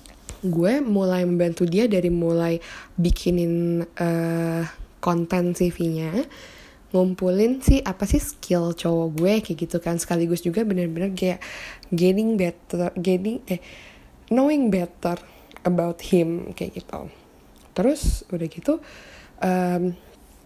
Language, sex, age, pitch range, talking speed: Indonesian, female, 10-29, 175-210 Hz, 110 wpm